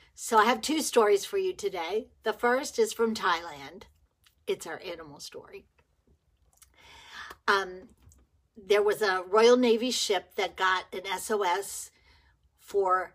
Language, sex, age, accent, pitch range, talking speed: English, female, 50-69, American, 185-265 Hz, 130 wpm